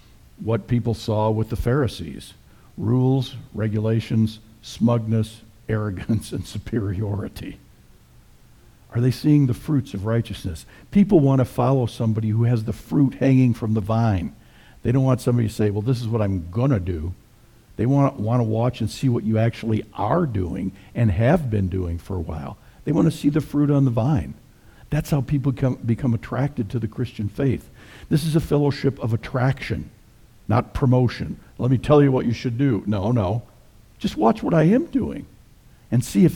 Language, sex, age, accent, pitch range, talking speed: English, male, 60-79, American, 110-135 Hz, 180 wpm